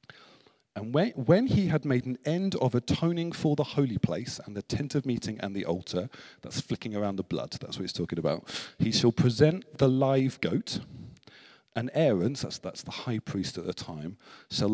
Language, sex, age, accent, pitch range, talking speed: English, male, 40-59, British, 105-145 Hz, 195 wpm